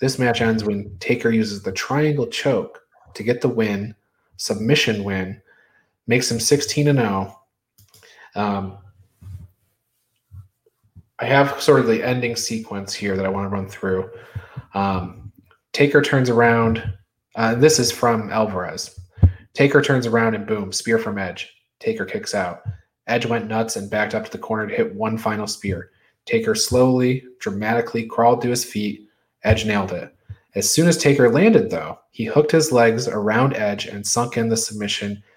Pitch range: 100-125 Hz